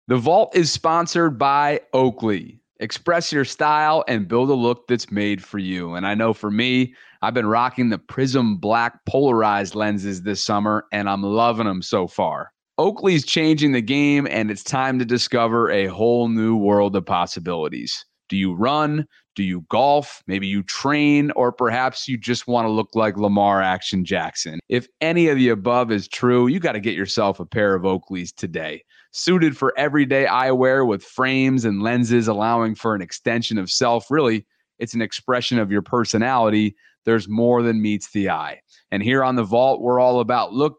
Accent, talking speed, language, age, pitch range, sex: American, 185 wpm, English, 30-49, 105-130 Hz, male